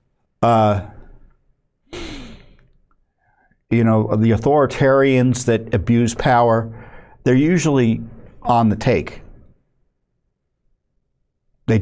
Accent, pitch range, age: American, 100-130 Hz, 50-69